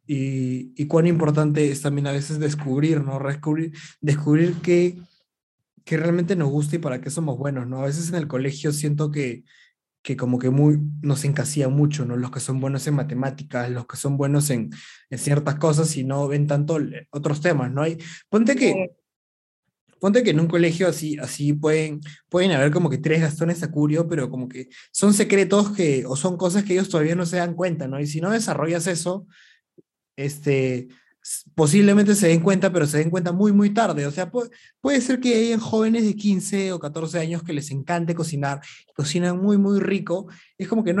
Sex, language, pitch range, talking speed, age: male, Spanish, 140-185 Hz, 195 wpm, 20-39